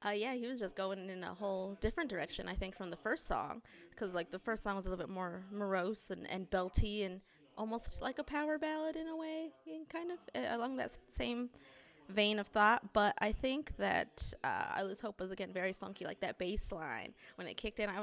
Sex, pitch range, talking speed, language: female, 185-225 Hz, 240 wpm, English